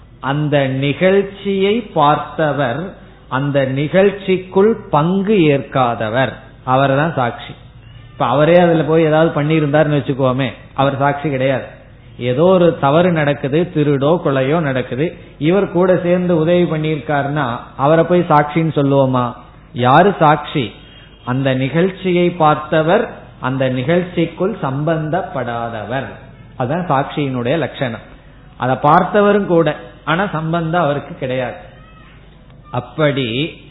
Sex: male